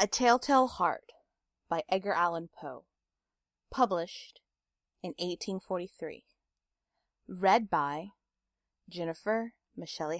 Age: 20-39